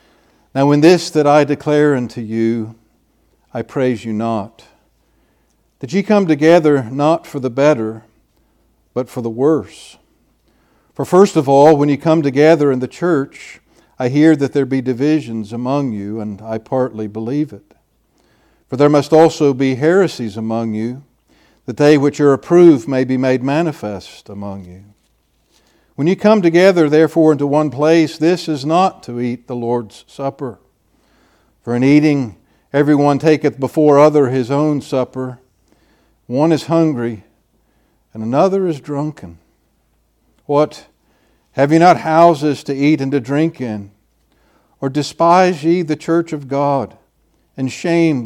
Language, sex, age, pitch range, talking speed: English, male, 60-79, 115-155 Hz, 150 wpm